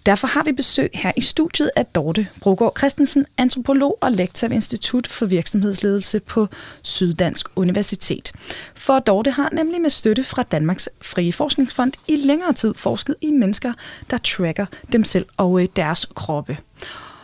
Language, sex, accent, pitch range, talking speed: Danish, female, native, 185-260 Hz, 155 wpm